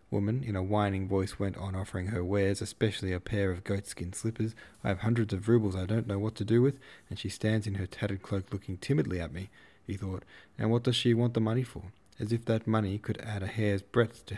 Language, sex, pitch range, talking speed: English, male, 95-115 Hz, 245 wpm